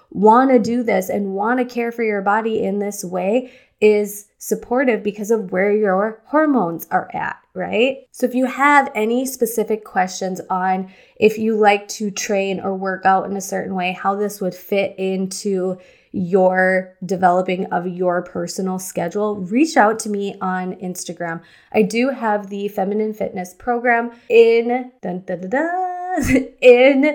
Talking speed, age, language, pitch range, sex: 155 wpm, 20-39, English, 190-235 Hz, female